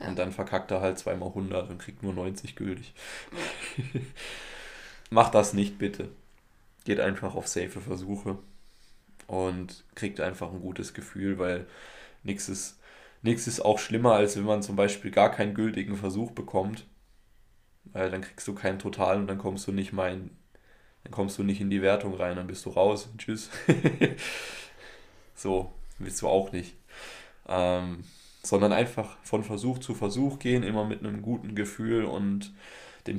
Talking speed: 160 wpm